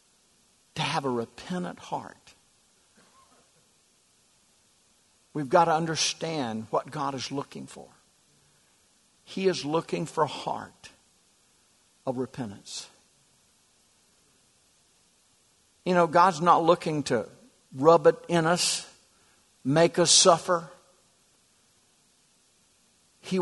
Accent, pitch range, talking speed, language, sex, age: American, 125-160 Hz, 90 wpm, English, male, 60-79